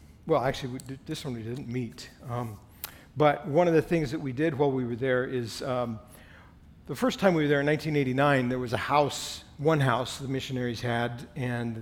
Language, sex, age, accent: English, male, 50-69, American